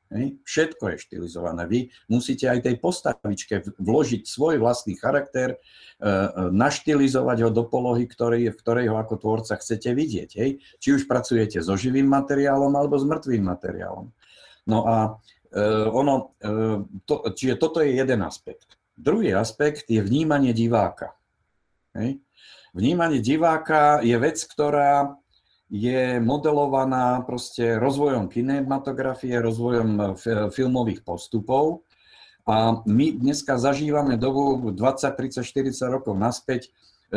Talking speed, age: 115 wpm, 50-69